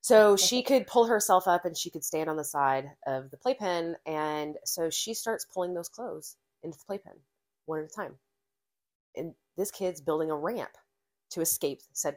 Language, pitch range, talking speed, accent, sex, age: English, 155-205 Hz, 190 wpm, American, female, 20-39